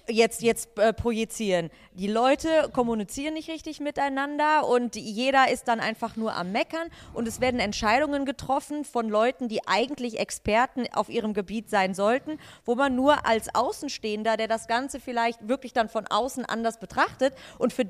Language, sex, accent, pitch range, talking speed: German, female, German, 230-280 Hz, 170 wpm